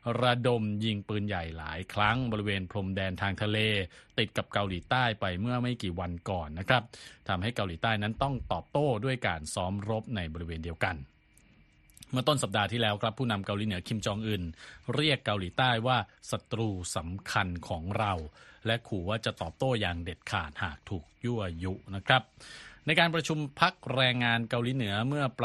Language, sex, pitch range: Thai, male, 95-125 Hz